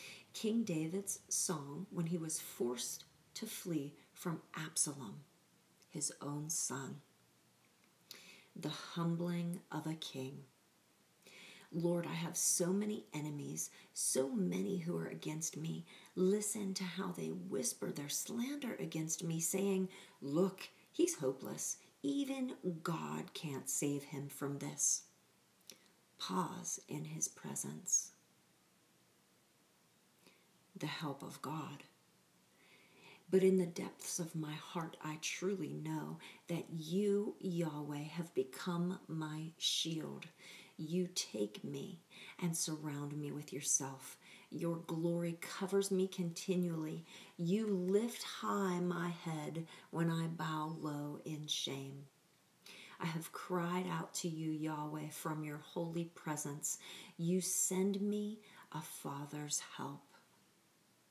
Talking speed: 115 wpm